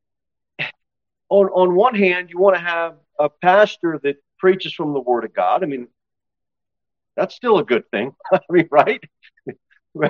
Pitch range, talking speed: 135-220 Hz, 165 wpm